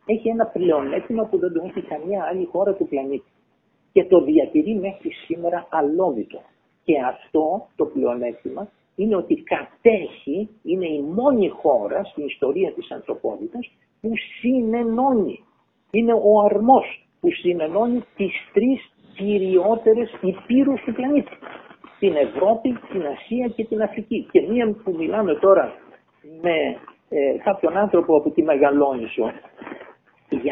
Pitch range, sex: 185-270 Hz, male